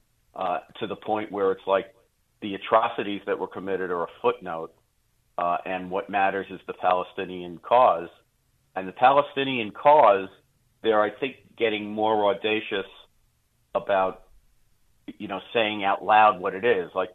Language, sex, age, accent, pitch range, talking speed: English, male, 50-69, American, 95-115 Hz, 155 wpm